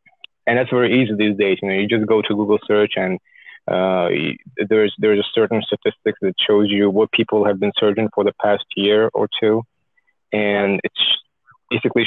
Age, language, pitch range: 20-39, English, 100-120 Hz